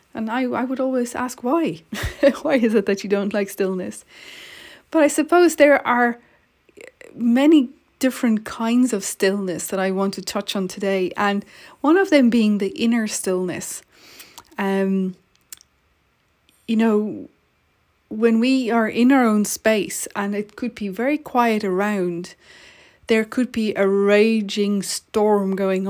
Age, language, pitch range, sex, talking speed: 30-49, English, 195-245 Hz, female, 150 wpm